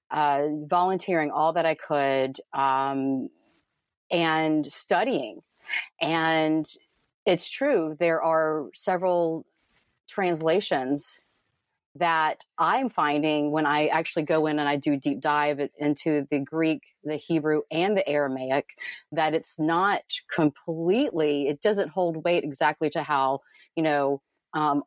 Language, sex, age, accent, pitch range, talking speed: English, female, 30-49, American, 145-170 Hz, 125 wpm